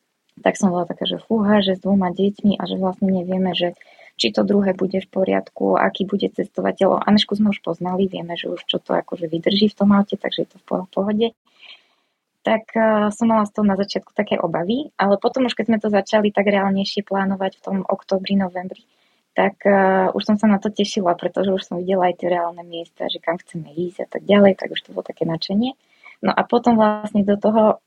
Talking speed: 215 wpm